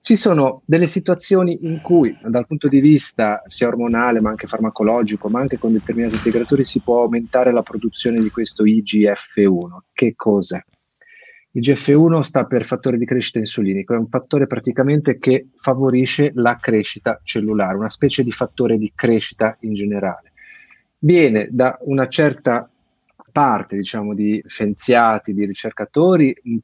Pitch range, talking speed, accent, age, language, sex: 105-135 Hz, 145 wpm, native, 30-49, Italian, male